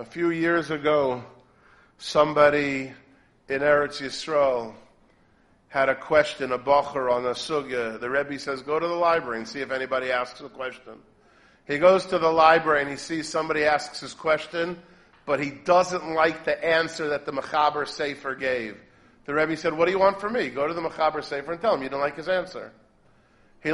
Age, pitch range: 40-59, 145-180 Hz